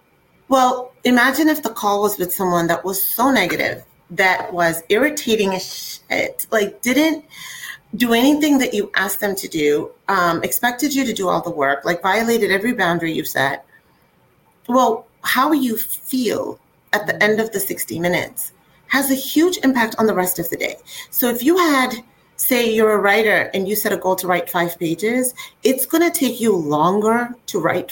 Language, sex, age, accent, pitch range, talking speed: English, female, 30-49, American, 185-250 Hz, 185 wpm